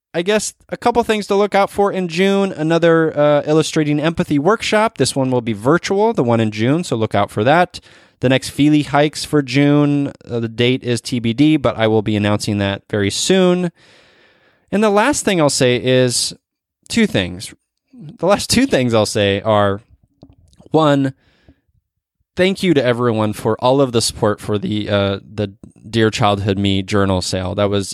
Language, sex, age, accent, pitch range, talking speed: English, male, 20-39, American, 105-155 Hz, 185 wpm